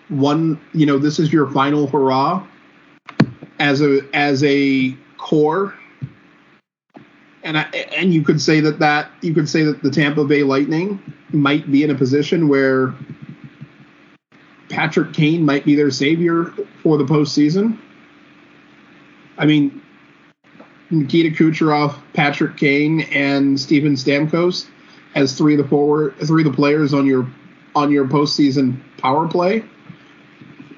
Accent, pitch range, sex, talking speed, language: American, 140-160 Hz, male, 135 wpm, English